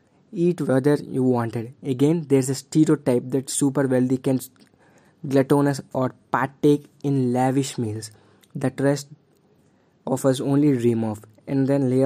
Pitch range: 130-155 Hz